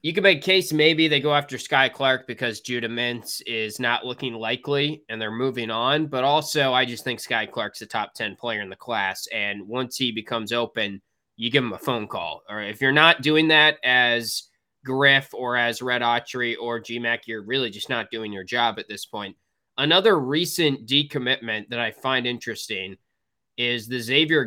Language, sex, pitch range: English, male, 115-145 Hz